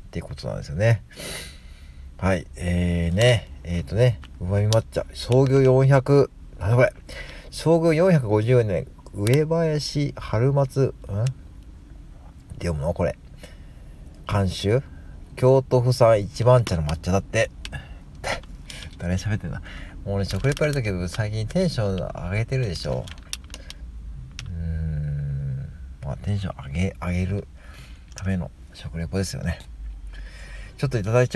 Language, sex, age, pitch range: Japanese, male, 40-59, 75-115 Hz